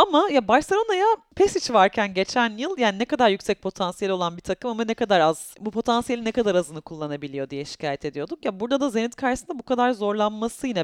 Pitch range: 185-245 Hz